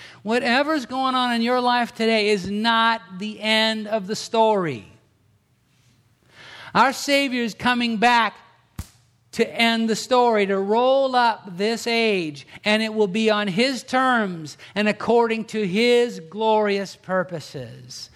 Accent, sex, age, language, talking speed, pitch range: American, male, 50-69, English, 135 wpm, 150-220 Hz